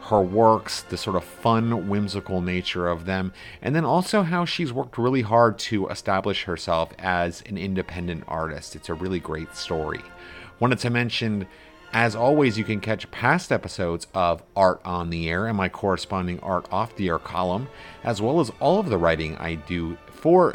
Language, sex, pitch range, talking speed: English, male, 90-115 Hz, 185 wpm